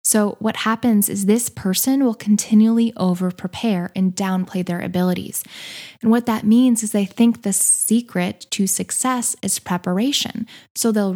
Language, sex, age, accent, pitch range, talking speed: English, female, 10-29, American, 195-230 Hz, 150 wpm